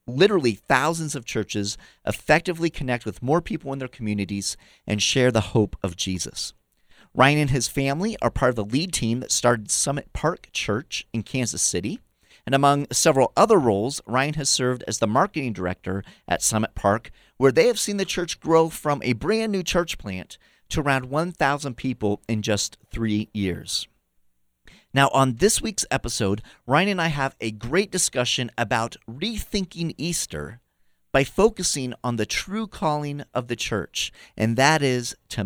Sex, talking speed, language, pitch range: male, 170 wpm, English, 110-155 Hz